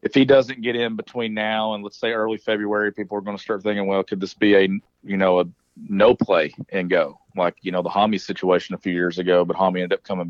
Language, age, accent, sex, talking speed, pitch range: English, 40-59, American, male, 260 wpm, 95-105 Hz